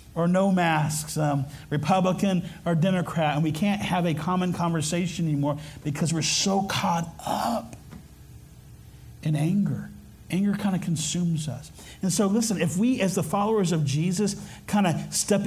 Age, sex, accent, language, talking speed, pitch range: 50-69, male, American, English, 155 wpm, 150-185 Hz